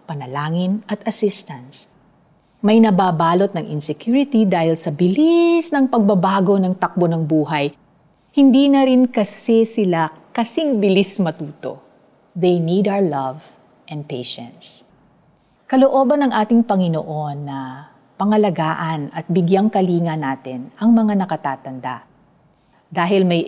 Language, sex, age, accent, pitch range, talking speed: Filipino, female, 50-69, native, 155-215 Hz, 115 wpm